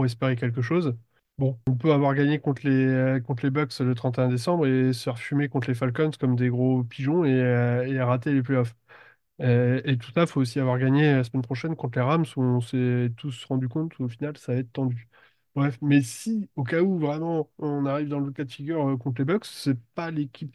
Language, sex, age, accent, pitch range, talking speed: French, male, 20-39, French, 125-145 Hz, 230 wpm